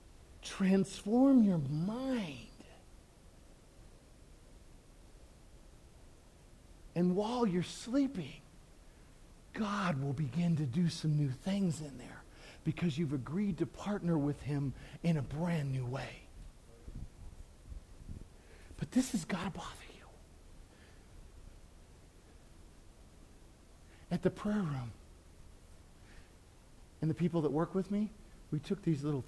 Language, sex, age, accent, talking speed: English, male, 50-69, American, 105 wpm